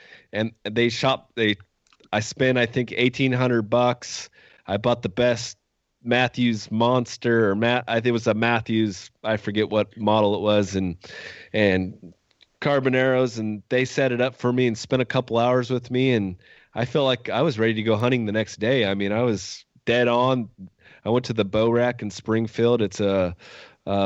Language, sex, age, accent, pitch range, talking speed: English, male, 20-39, American, 100-120 Hz, 190 wpm